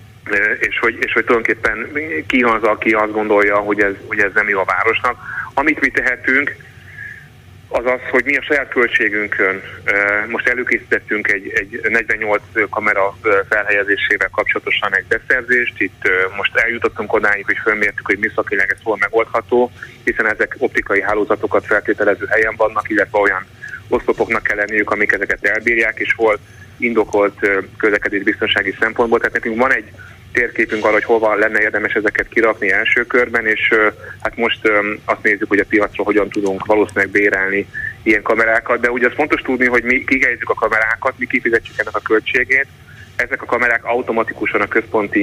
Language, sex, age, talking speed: Hungarian, male, 30-49, 160 wpm